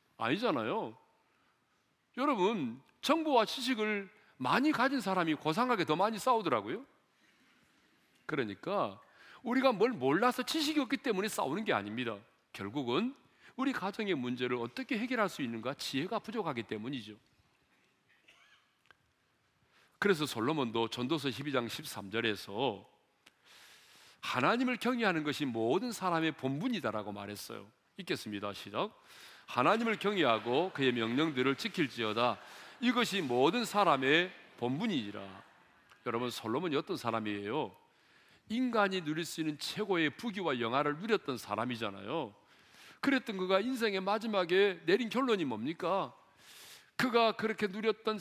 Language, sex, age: Korean, male, 40-59